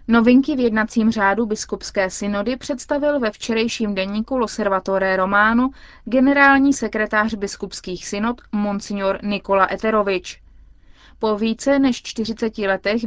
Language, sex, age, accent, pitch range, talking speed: Czech, female, 20-39, native, 195-225 Hz, 110 wpm